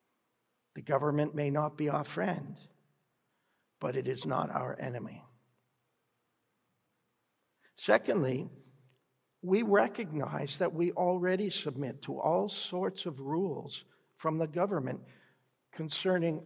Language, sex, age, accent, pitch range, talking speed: English, male, 60-79, American, 140-155 Hz, 105 wpm